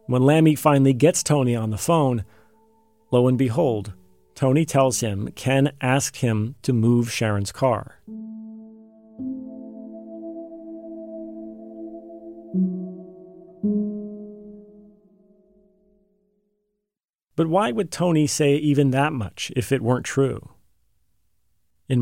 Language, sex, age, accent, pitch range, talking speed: English, male, 40-59, American, 110-150 Hz, 95 wpm